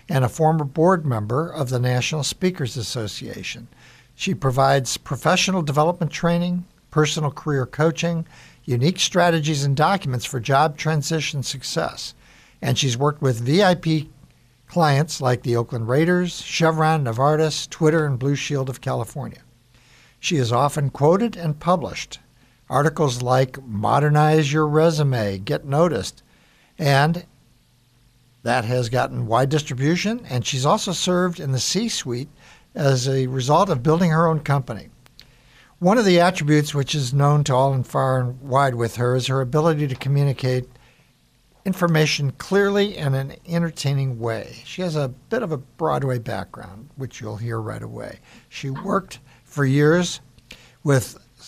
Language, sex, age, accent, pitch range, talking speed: English, male, 60-79, American, 125-160 Hz, 140 wpm